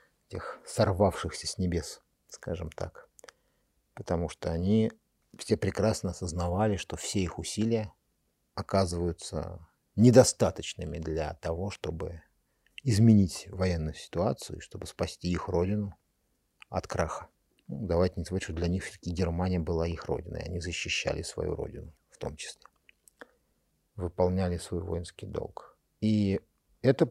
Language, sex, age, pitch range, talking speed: Russian, male, 50-69, 90-110 Hz, 120 wpm